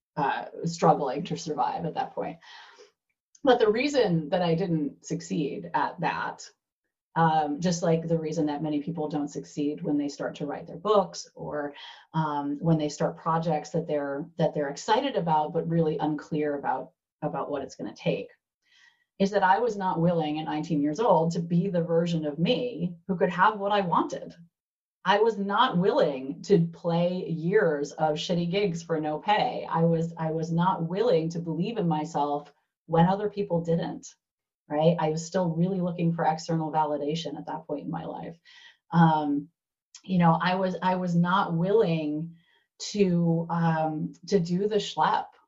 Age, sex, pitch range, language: 30-49, female, 155-185 Hz, English